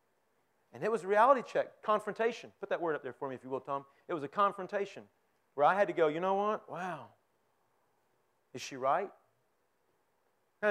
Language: English